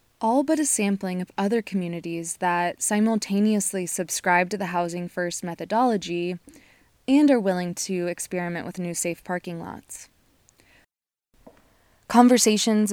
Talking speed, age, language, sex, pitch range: 120 wpm, 20-39, English, female, 185-225 Hz